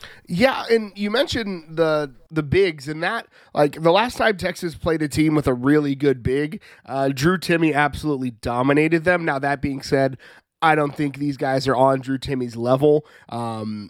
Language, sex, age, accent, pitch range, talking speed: English, male, 30-49, American, 140-170 Hz, 185 wpm